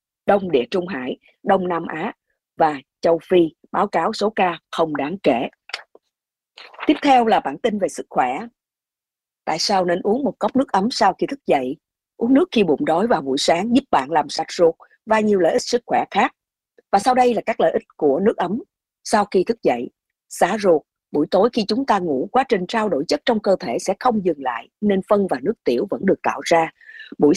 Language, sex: Japanese, female